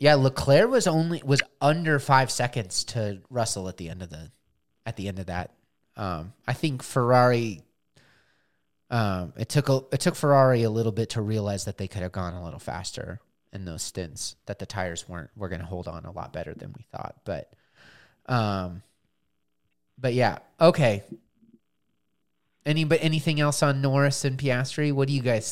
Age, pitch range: 30-49, 100-145 Hz